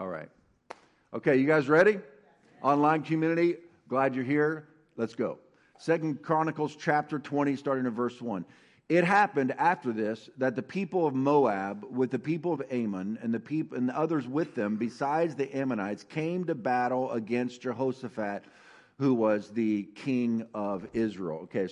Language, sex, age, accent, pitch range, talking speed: English, male, 50-69, American, 125-170 Hz, 155 wpm